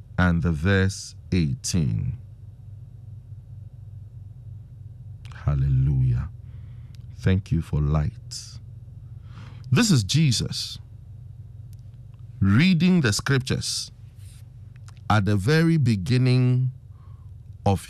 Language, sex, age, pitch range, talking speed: English, male, 50-69, 110-160 Hz, 65 wpm